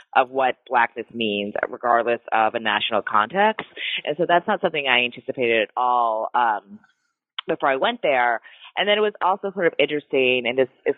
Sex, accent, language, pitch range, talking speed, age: female, American, English, 120-170 Hz, 185 wpm, 20-39